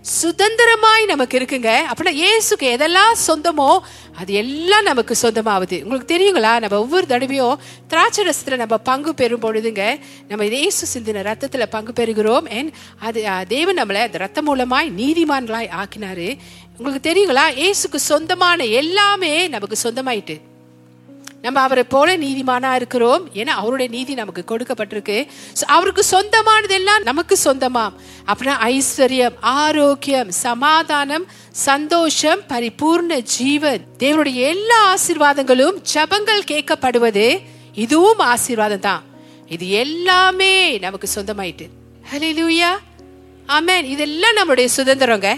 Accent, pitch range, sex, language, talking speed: native, 225-335 Hz, female, Tamil, 80 wpm